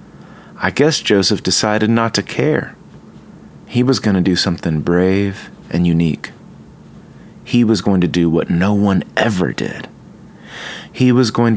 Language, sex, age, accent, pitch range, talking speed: English, male, 30-49, American, 90-125 Hz, 150 wpm